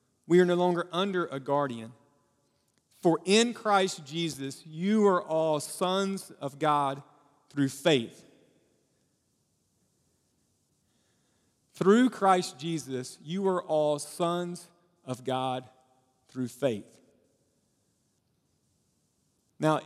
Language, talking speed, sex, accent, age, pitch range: English, 95 wpm, male, American, 40-59, 145-195 Hz